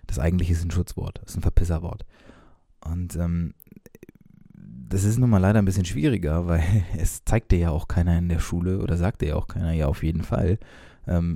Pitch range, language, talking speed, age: 85-100 Hz, German, 205 wpm, 20-39